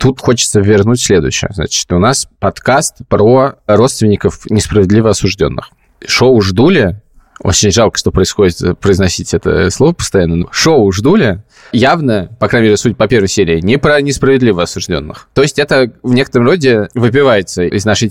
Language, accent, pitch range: Russian, native, 100-130 Hz